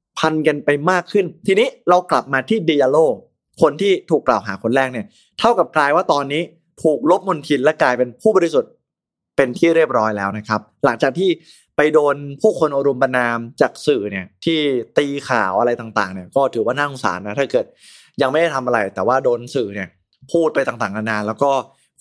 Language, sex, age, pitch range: Thai, male, 20-39, 120-170 Hz